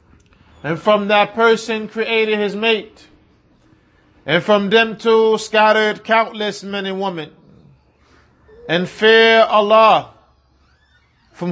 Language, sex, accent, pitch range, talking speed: English, male, American, 195-220 Hz, 105 wpm